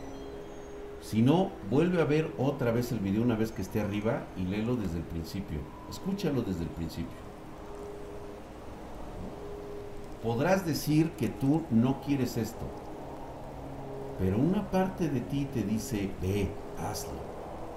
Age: 50-69